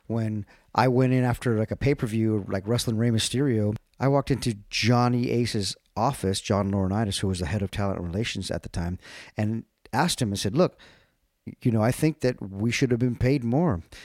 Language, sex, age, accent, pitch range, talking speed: English, male, 40-59, American, 105-130 Hz, 210 wpm